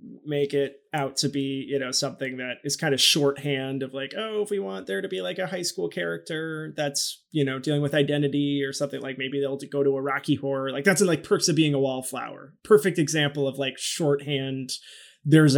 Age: 20-39